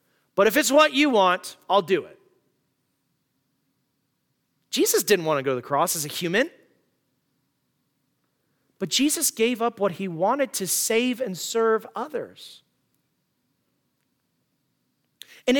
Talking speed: 125 wpm